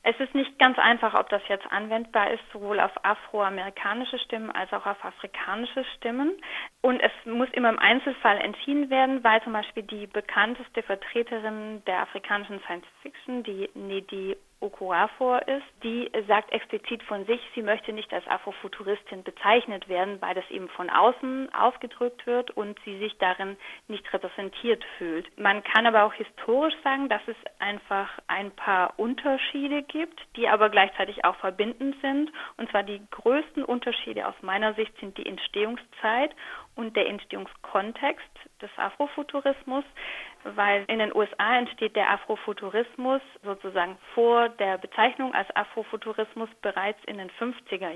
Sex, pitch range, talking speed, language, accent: female, 200-245 Hz, 150 wpm, German, German